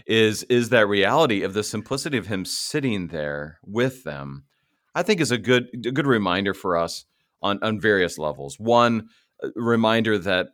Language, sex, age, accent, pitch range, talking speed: English, male, 40-59, American, 90-115 Hz, 175 wpm